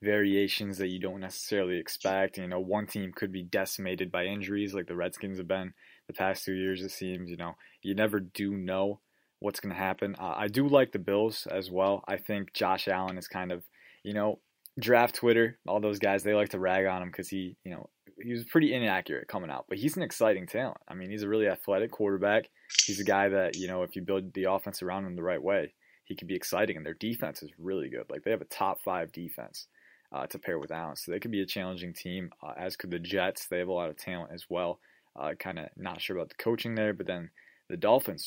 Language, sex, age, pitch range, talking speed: English, male, 20-39, 95-105 Hz, 245 wpm